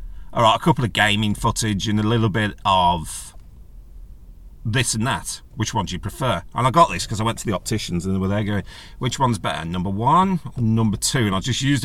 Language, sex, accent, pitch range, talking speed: English, male, British, 95-140 Hz, 240 wpm